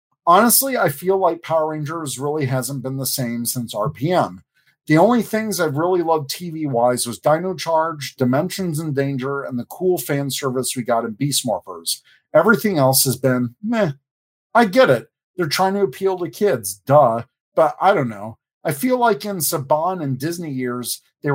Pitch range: 130-175 Hz